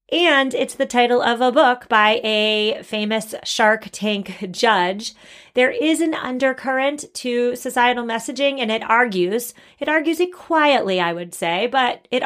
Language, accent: English, American